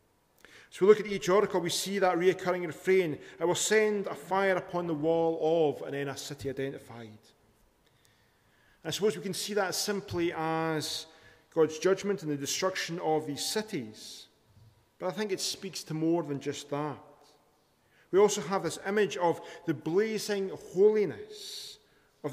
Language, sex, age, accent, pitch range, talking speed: English, male, 40-59, British, 145-190 Hz, 165 wpm